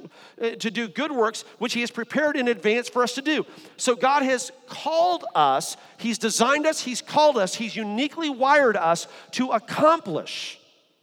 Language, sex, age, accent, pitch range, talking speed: English, male, 40-59, American, 220-300 Hz, 170 wpm